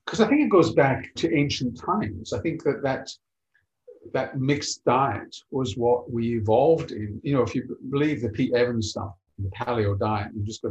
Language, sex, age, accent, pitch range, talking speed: English, male, 50-69, British, 110-135 Hz, 200 wpm